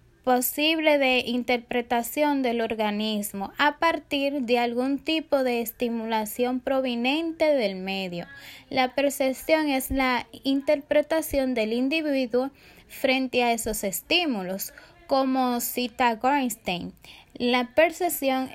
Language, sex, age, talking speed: Spanish, female, 10-29, 100 wpm